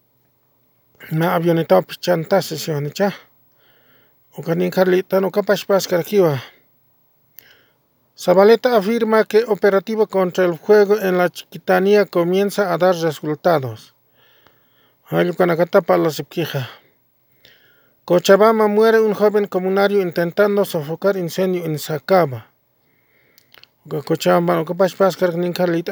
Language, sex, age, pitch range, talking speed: English, male, 40-59, 170-205 Hz, 120 wpm